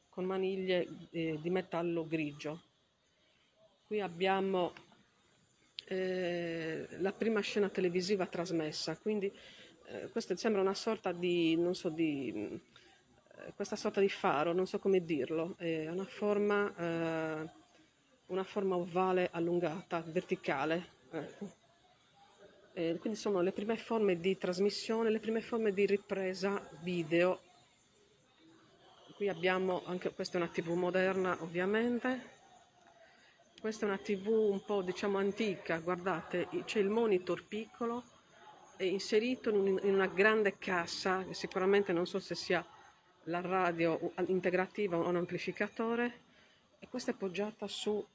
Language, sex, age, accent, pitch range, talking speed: Italian, female, 40-59, native, 175-205 Hz, 125 wpm